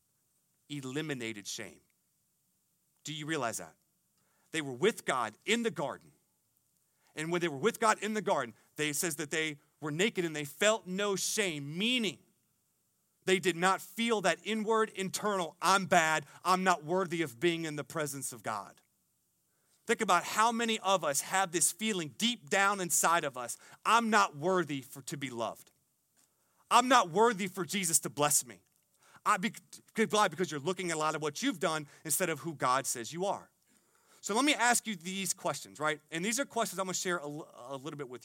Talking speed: 190 wpm